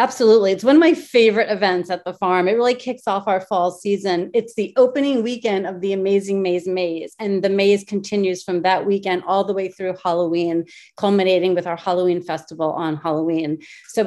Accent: American